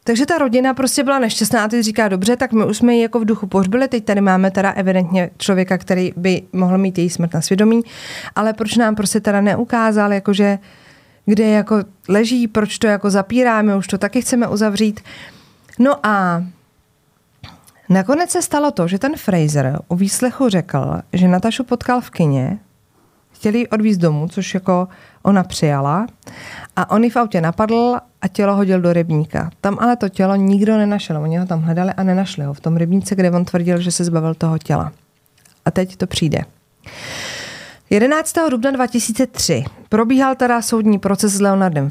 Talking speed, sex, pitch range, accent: 180 wpm, female, 180-230 Hz, native